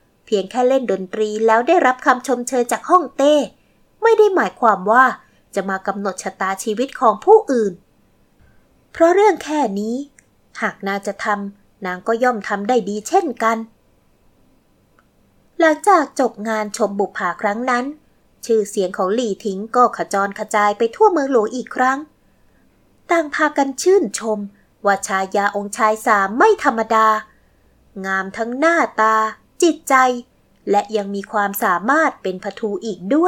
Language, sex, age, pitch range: Thai, female, 20-39, 205-280 Hz